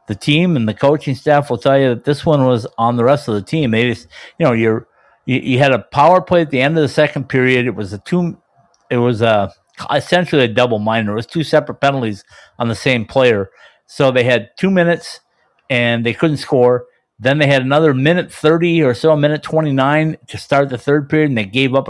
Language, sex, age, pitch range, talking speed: English, male, 50-69, 120-155 Hz, 235 wpm